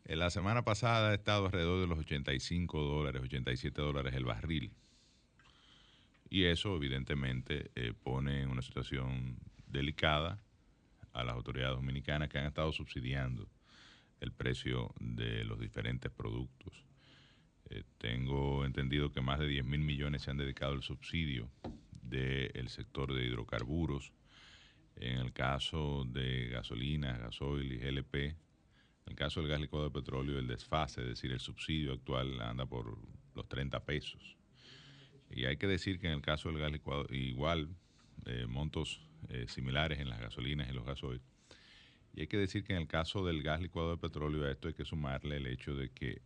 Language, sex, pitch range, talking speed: Spanish, male, 65-80 Hz, 165 wpm